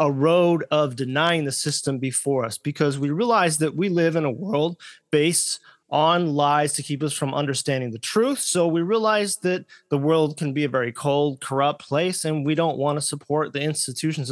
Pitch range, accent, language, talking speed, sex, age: 145-180 Hz, American, English, 200 wpm, male, 30-49